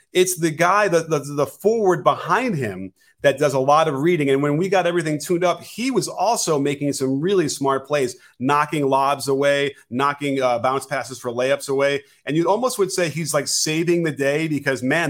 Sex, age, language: male, 30-49, English